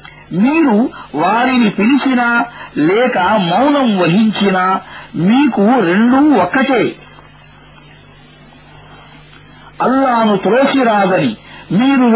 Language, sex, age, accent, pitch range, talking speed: English, male, 50-69, Indian, 200-255 Hz, 85 wpm